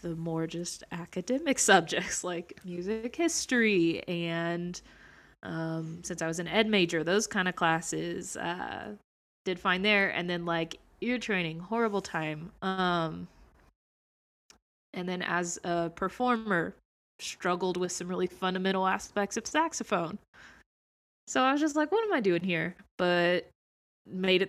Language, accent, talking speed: English, American, 140 wpm